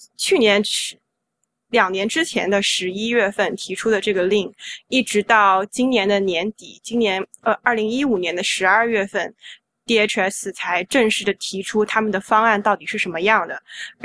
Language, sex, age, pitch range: Chinese, female, 20-39, 200-235 Hz